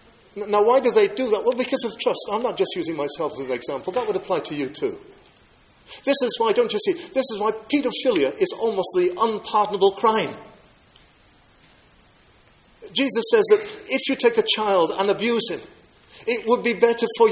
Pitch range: 170-265 Hz